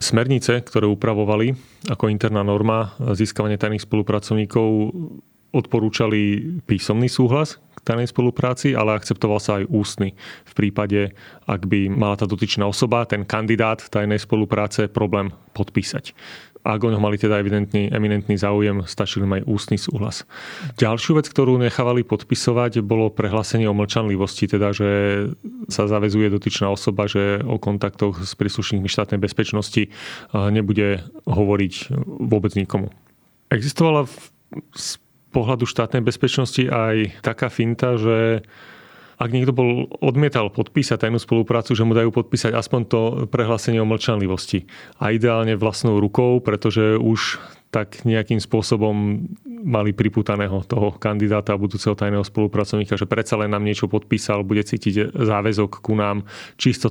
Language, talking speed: Slovak, 135 wpm